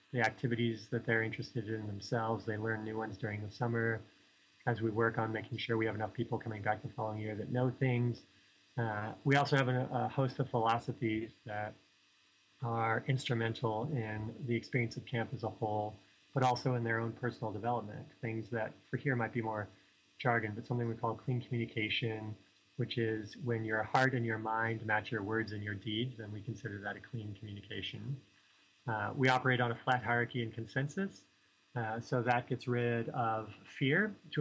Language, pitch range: English, 110-125 Hz